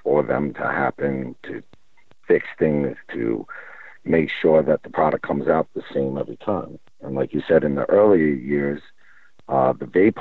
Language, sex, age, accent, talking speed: English, male, 60-79, American, 175 wpm